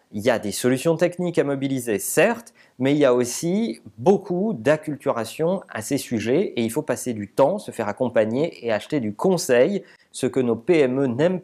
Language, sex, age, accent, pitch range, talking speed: French, male, 40-59, French, 125-170 Hz, 195 wpm